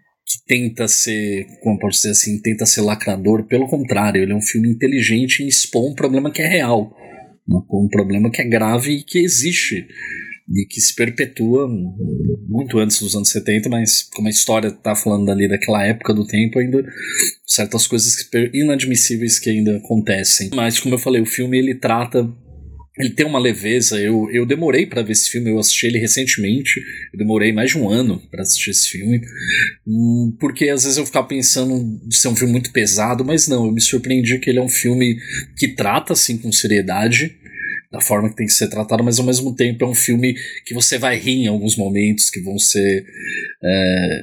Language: Portuguese